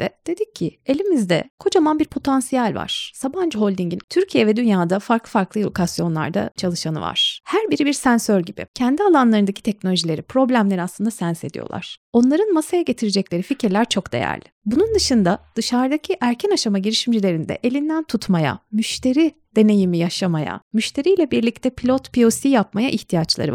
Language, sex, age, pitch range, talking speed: Turkish, female, 30-49, 195-285 Hz, 135 wpm